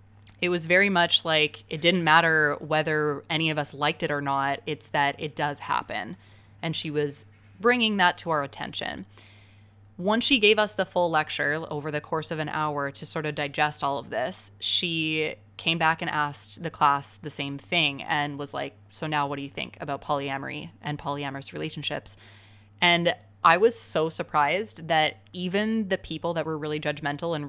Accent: American